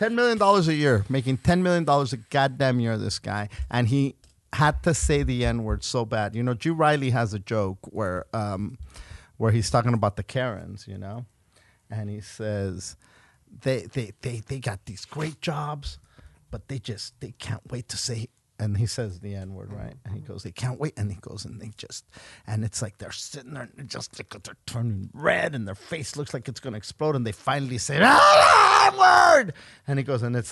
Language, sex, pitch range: English, male, 105-140 Hz